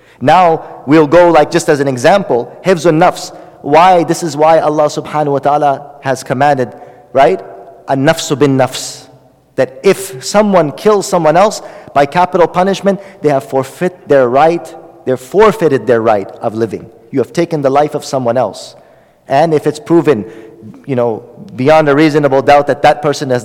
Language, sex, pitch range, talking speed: English, male, 140-185 Hz, 170 wpm